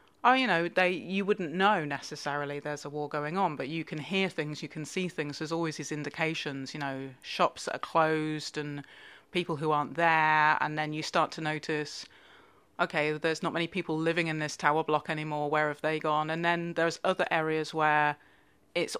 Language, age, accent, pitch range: English, 30-49, British, 150-175 Hz